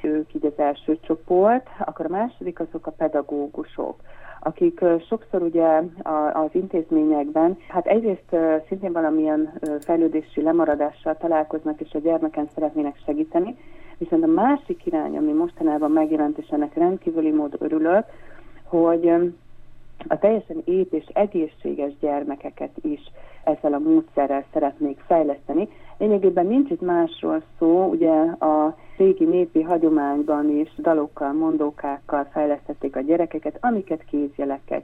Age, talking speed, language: 40-59, 120 wpm, Hungarian